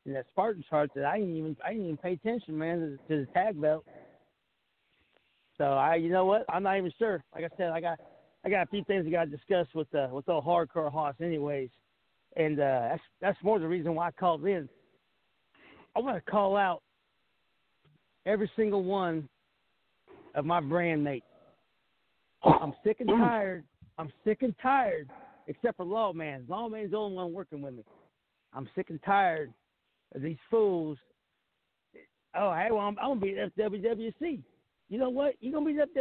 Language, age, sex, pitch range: English, 50-69, male, 155-215 Hz